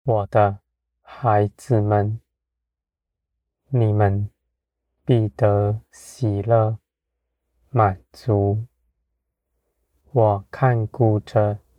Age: 20-39